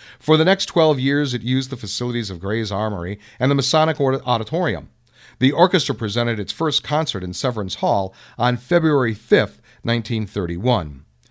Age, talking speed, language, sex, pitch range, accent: 50-69, 155 wpm, English, male, 110-155 Hz, American